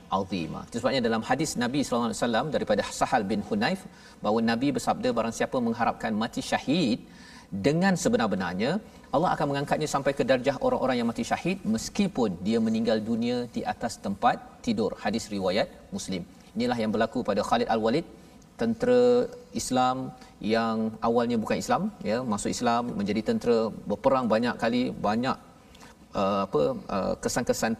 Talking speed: 145 wpm